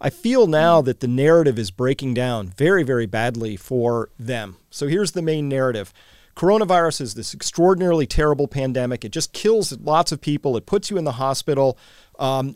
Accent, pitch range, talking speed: American, 125-170 Hz, 180 wpm